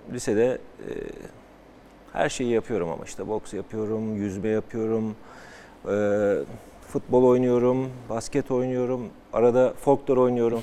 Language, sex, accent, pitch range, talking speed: Turkish, male, native, 105-140 Hz, 105 wpm